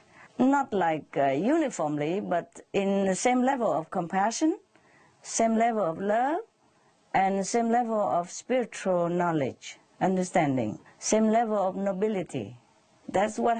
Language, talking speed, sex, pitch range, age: English, 130 wpm, female, 185-270 Hz, 50-69